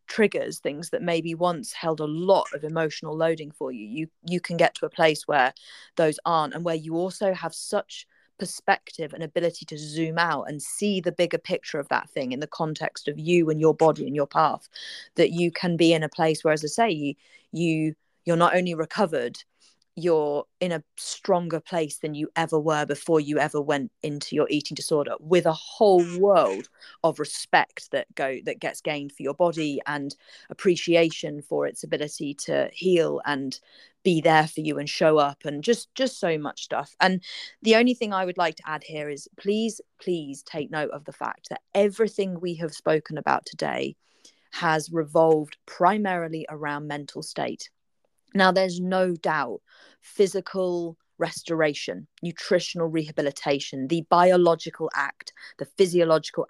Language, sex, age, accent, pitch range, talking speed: English, female, 30-49, British, 155-180 Hz, 175 wpm